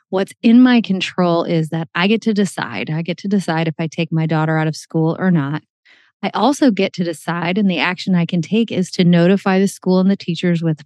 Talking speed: 245 wpm